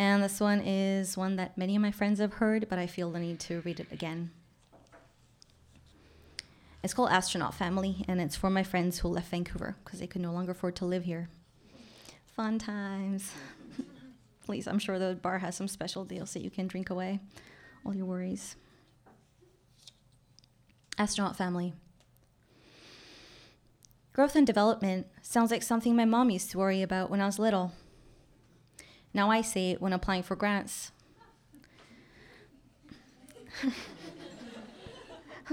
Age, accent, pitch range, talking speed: 20-39, American, 180-220 Hz, 150 wpm